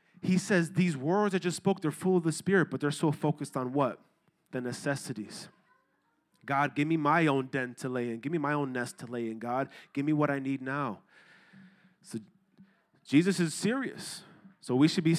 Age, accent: 30-49, American